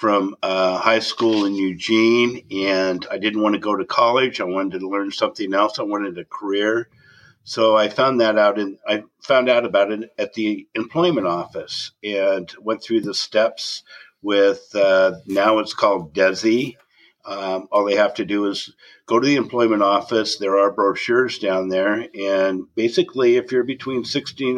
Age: 60-79